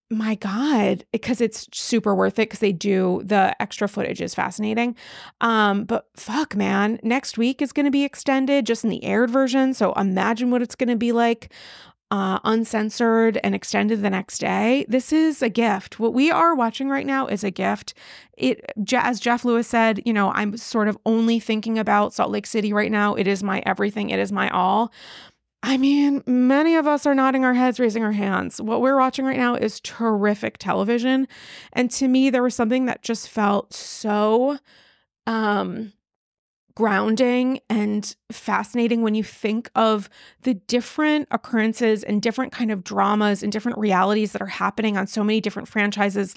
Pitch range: 205-250 Hz